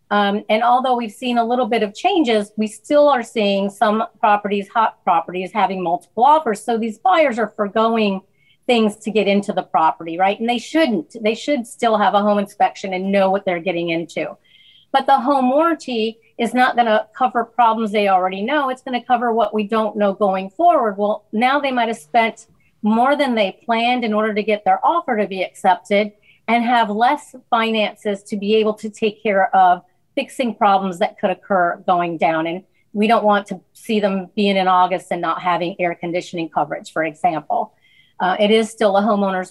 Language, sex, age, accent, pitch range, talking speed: English, female, 40-59, American, 195-240 Hz, 200 wpm